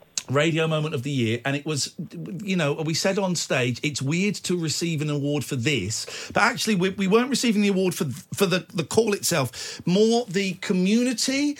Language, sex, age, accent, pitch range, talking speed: English, male, 50-69, British, 135-190 Hz, 200 wpm